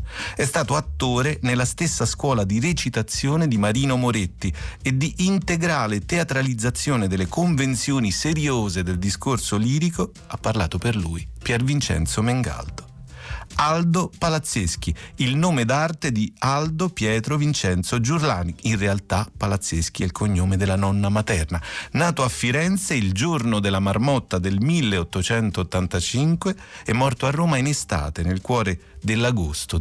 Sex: male